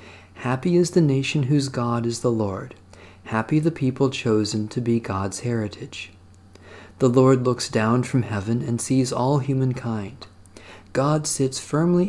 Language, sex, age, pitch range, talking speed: English, male, 40-59, 95-130 Hz, 150 wpm